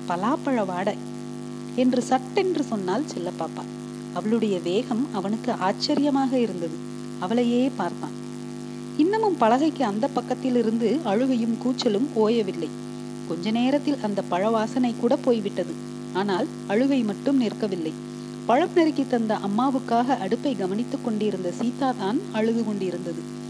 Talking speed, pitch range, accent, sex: 80 wpm, 195-270 Hz, native, female